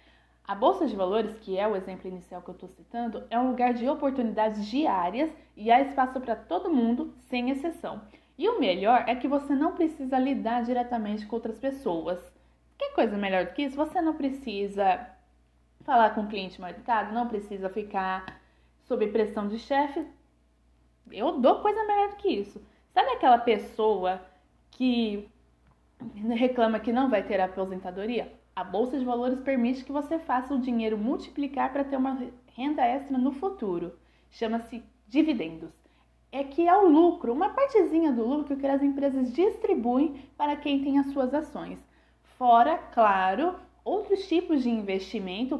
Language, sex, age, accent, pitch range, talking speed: Portuguese, female, 20-39, Brazilian, 215-300 Hz, 165 wpm